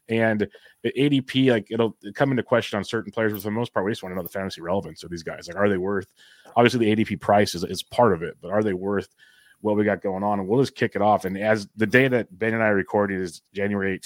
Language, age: English, 30-49